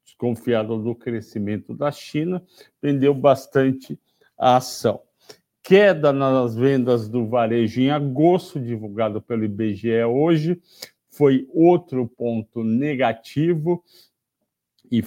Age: 60-79